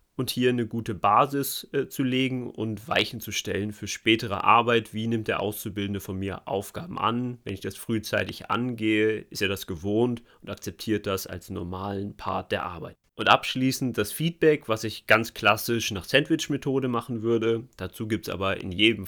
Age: 30-49